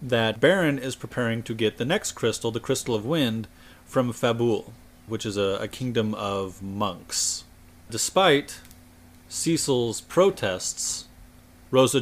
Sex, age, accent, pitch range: male, 30-49, American, 105-135 Hz